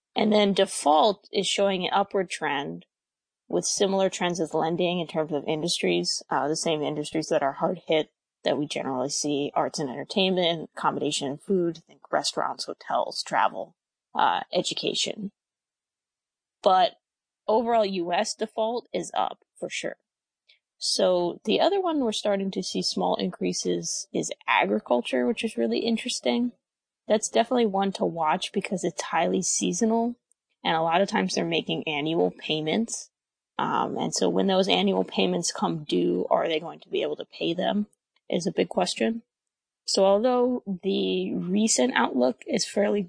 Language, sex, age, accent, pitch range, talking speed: English, female, 20-39, American, 155-220 Hz, 155 wpm